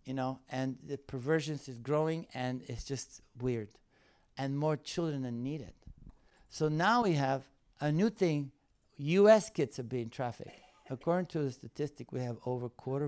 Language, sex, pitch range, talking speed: English, male, 115-145 Hz, 170 wpm